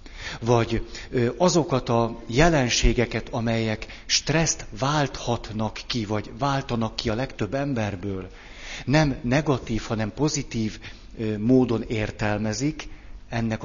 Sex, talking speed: male, 90 wpm